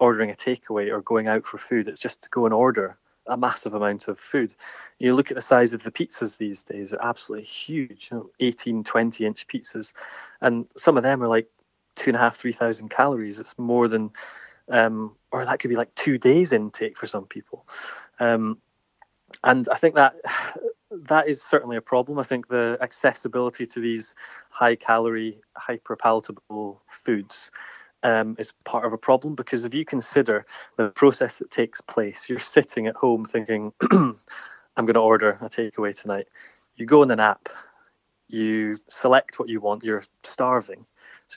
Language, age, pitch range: English, 20-39, 110-125 Hz